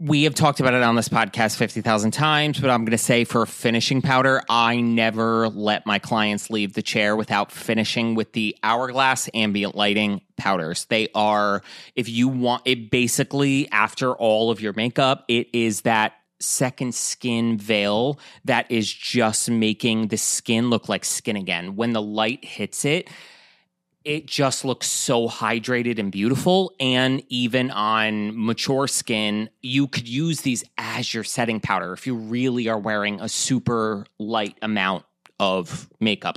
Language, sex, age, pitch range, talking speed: English, male, 30-49, 110-130 Hz, 160 wpm